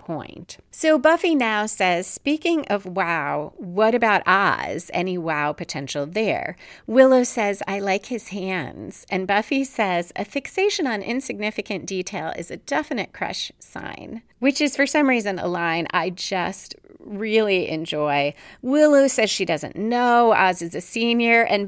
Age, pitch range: 30-49, 180-245 Hz